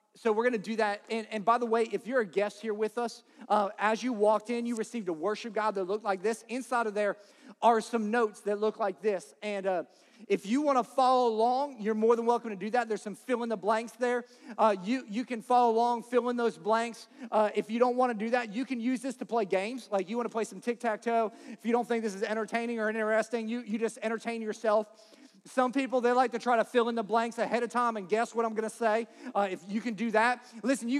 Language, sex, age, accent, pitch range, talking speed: English, male, 40-59, American, 210-245 Hz, 260 wpm